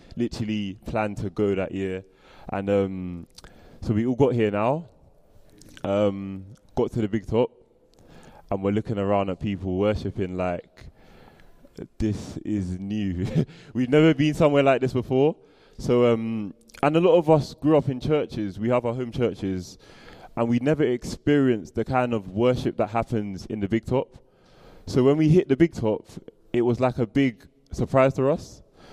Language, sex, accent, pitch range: English, male, British, 100-125 Hz